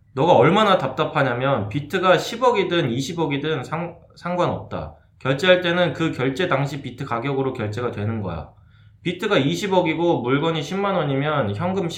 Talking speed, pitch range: 110 wpm, 105-160 Hz